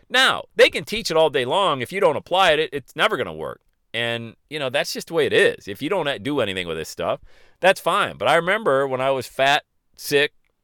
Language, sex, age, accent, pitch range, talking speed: English, male, 40-59, American, 120-165 Hz, 260 wpm